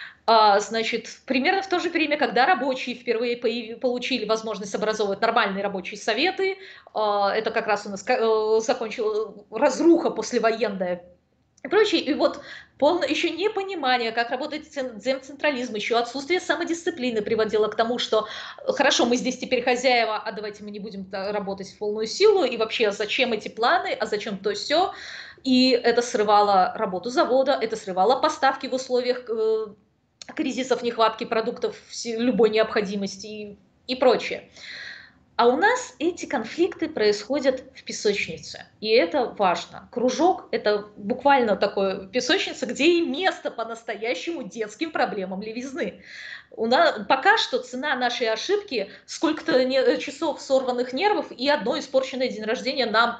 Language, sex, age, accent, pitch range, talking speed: Russian, female, 20-39, native, 220-280 Hz, 135 wpm